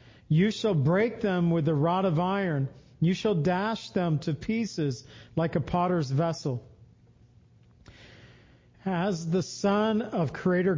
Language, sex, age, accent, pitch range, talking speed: English, male, 50-69, American, 145-195 Hz, 135 wpm